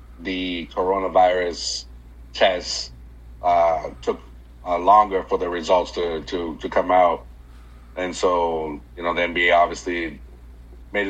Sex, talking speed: male, 125 wpm